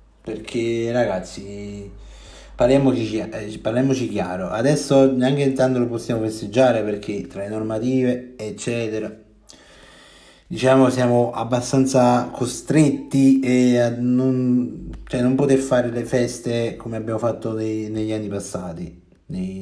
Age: 30-49